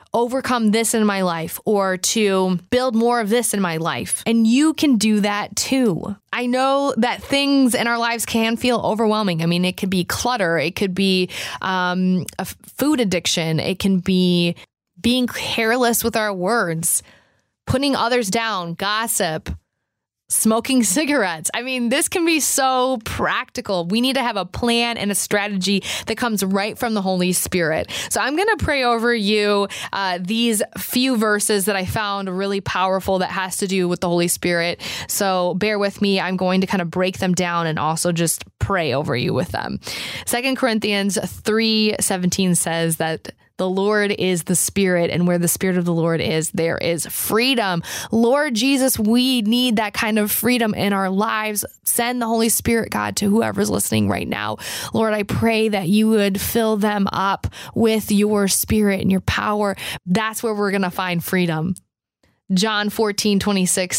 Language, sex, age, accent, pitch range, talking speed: English, female, 20-39, American, 180-230 Hz, 180 wpm